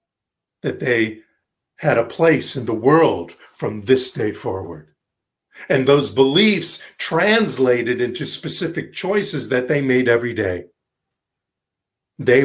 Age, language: 50-69, English